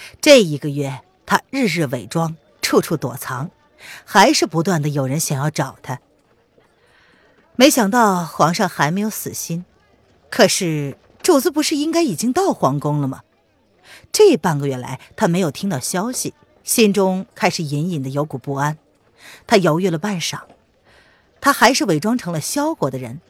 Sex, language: female, Chinese